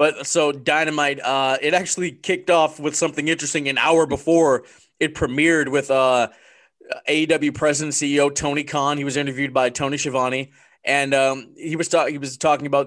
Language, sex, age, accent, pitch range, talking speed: English, male, 20-39, American, 120-145 Hz, 175 wpm